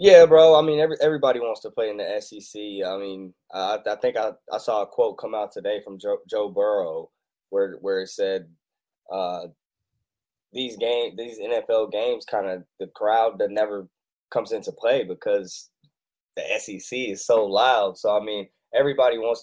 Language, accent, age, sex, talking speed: English, American, 10-29, male, 185 wpm